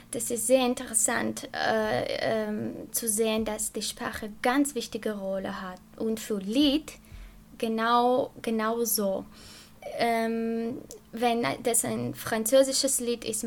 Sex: female